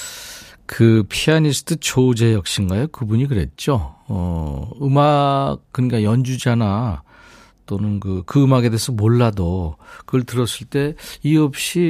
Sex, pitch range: male, 95-140 Hz